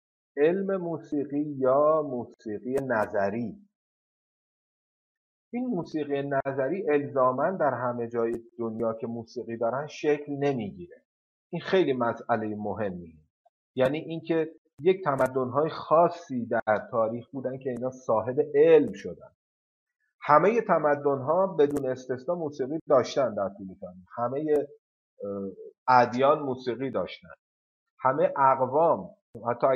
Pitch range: 120-165 Hz